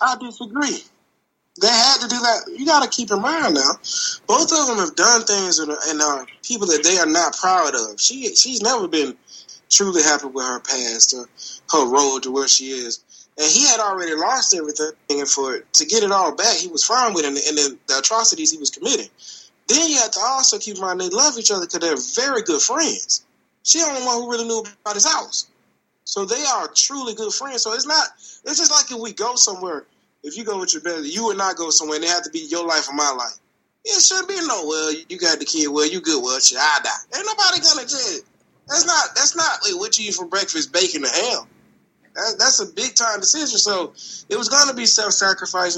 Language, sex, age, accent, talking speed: English, male, 20-39, American, 230 wpm